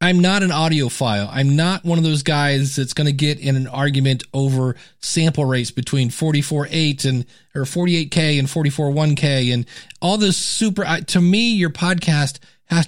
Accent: American